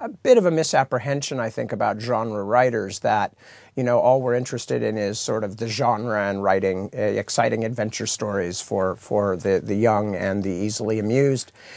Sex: male